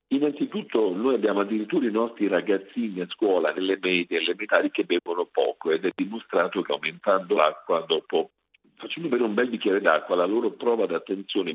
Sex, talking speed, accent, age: male, 165 wpm, native, 50-69